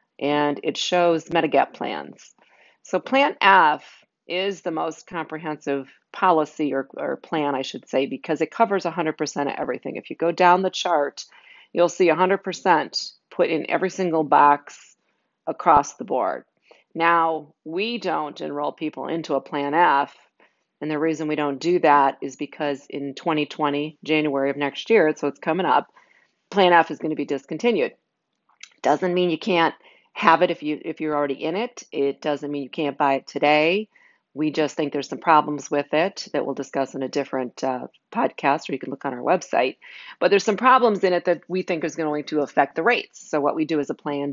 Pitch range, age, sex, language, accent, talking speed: 145-175 Hz, 40-59, female, English, American, 195 wpm